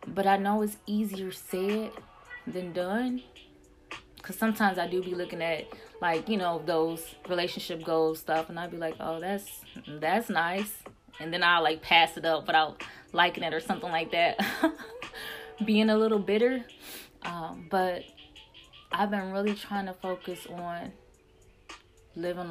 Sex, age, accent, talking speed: female, 10-29, American, 155 wpm